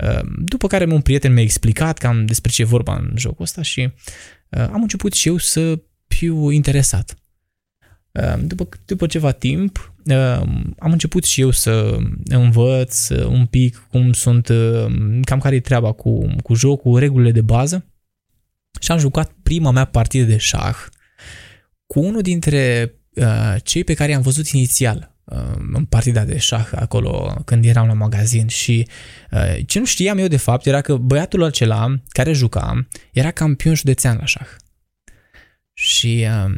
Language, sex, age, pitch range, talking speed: Romanian, male, 20-39, 115-150 Hz, 150 wpm